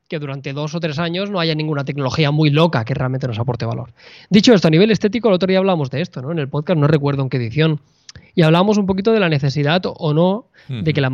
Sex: male